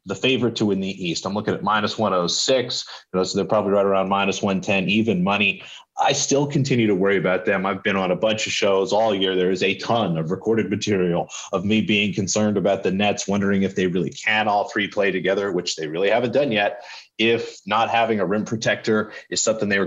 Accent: American